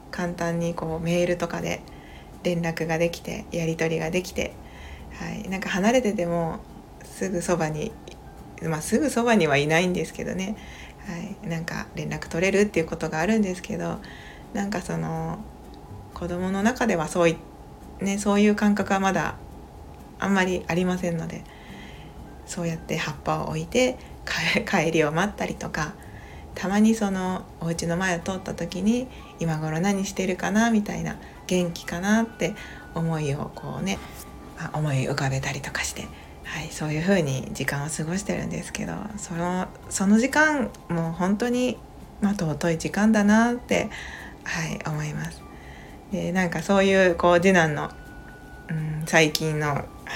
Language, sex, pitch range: Japanese, female, 155-195 Hz